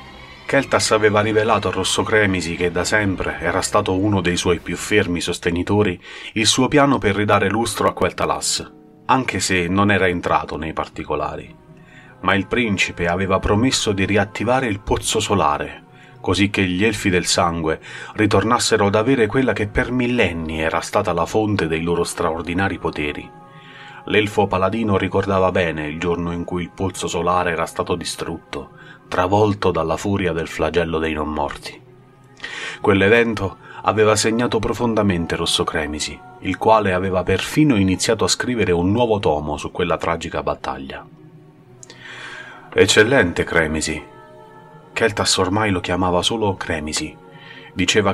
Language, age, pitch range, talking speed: Italian, 30-49, 85-110 Hz, 145 wpm